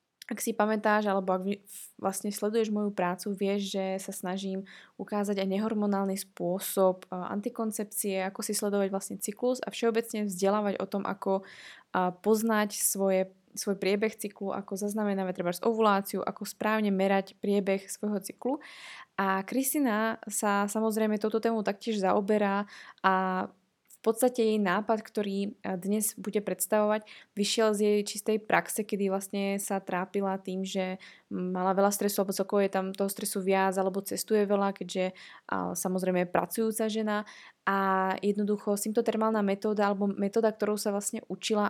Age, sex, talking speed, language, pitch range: 20-39, female, 145 wpm, Slovak, 195-220 Hz